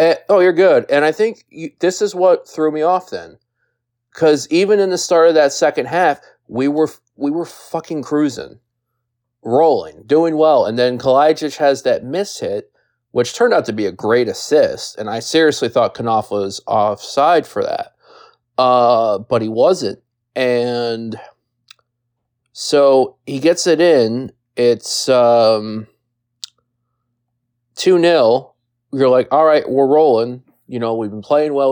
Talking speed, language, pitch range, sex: 155 wpm, English, 120-150 Hz, male